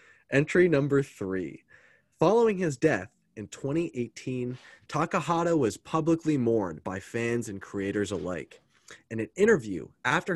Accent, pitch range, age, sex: American, 105-145 Hz, 20-39, male